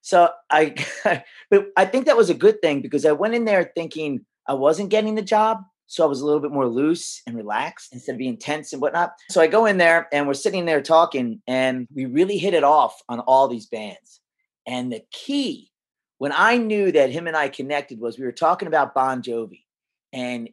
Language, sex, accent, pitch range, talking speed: English, male, American, 130-180 Hz, 220 wpm